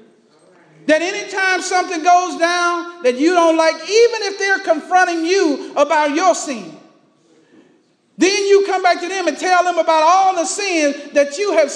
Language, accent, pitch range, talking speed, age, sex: English, American, 275-355 Hz, 175 wpm, 40-59, male